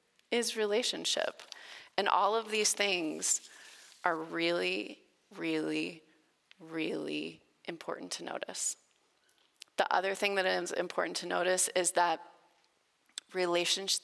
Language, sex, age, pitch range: English, female, 30-49, 175-230 Hz